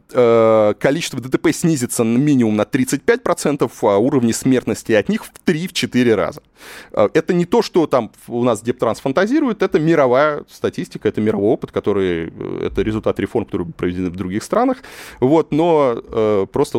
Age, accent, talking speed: 30-49, native, 150 wpm